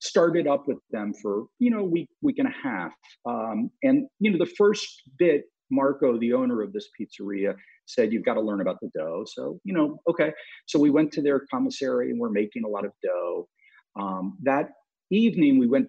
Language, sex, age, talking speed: English, male, 50-69, 210 wpm